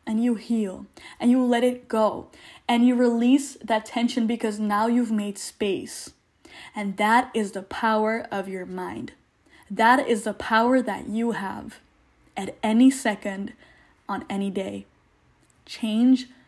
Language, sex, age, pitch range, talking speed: English, female, 10-29, 220-260 Hz, 145 wpm